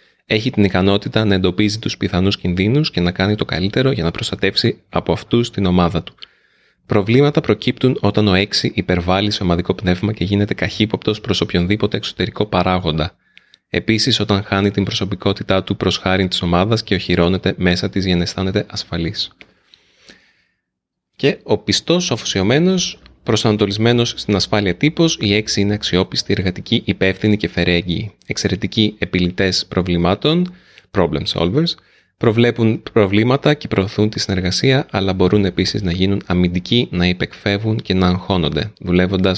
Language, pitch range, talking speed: Greek, 90-110 Hz, 140 wpm